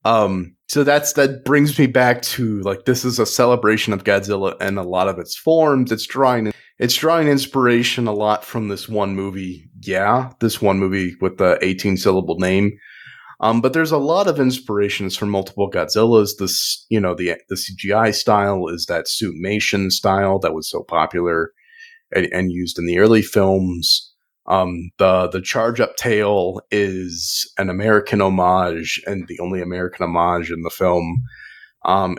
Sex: male